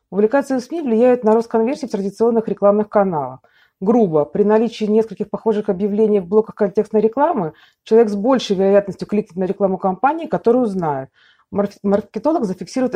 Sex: female